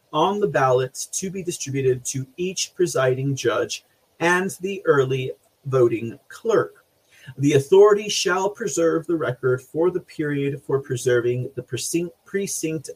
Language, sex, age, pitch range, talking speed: English, male, 30-49, 130-175 Hz, 130 wpm